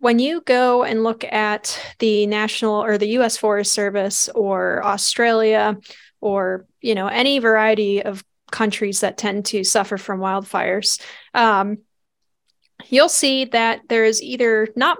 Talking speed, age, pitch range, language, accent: 145 wpm, 10-29, 210-235 Hz, English, American